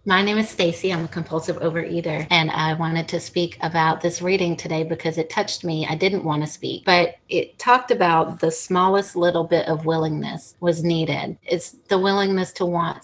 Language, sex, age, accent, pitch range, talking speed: English, female, 30-49, American, 165-190 Hz, 200 wpm